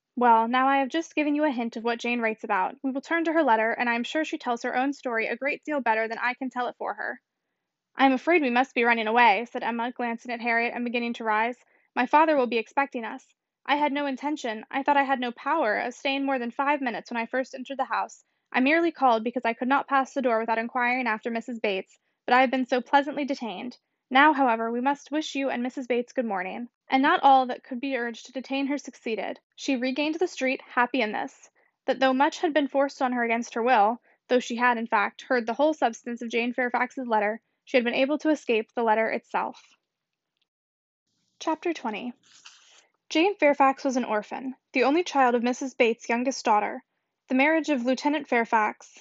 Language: English